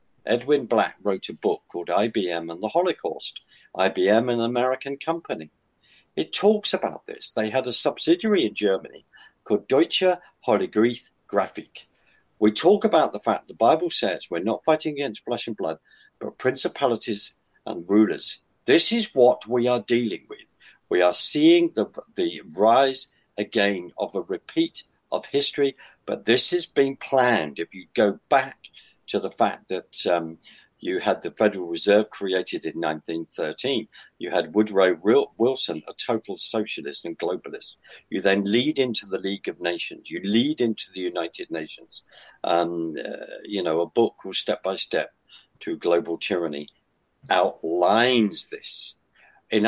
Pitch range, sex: 95-150 Hz, male